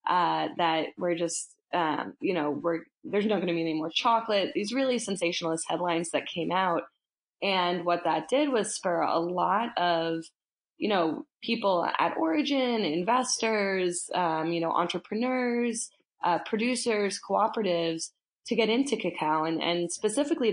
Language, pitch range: English, 165-210 Hz